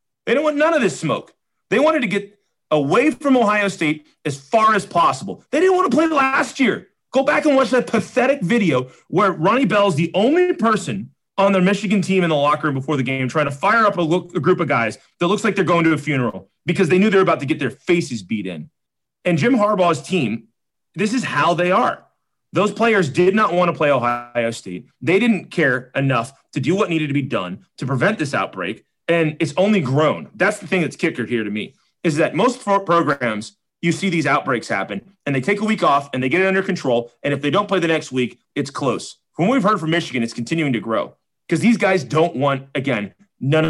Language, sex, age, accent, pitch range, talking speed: English, male, 30-49, American, 135-200 Hz, 235 wpm